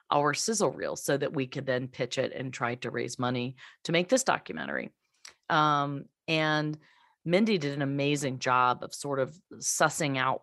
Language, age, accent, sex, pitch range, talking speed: English, 40-59, American, female, 135-165 Hz, 180 wpm